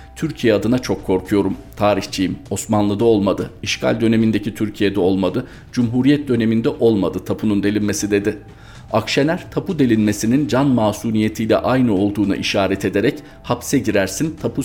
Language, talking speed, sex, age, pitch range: Turkish, 120 wpm, male, 40-59, 100-115 Hz